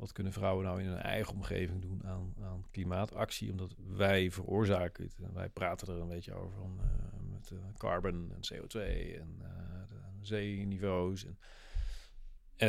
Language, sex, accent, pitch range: Dutch, male, Dutch, 90-105 Hz